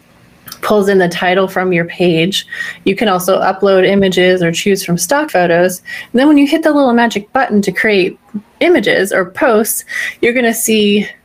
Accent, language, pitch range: American, English, 180-225 Hz